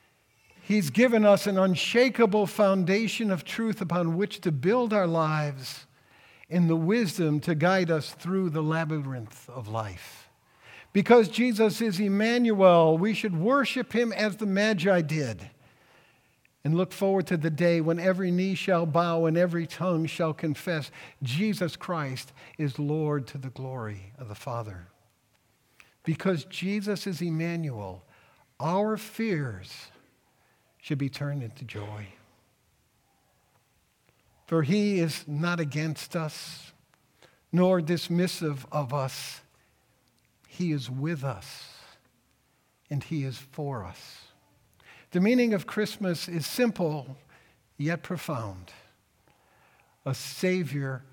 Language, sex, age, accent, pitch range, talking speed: English, male, 60-79, American, 130-185 Hz, 120 wpm